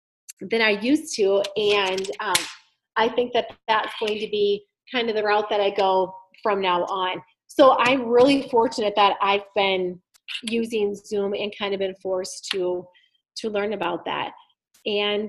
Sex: female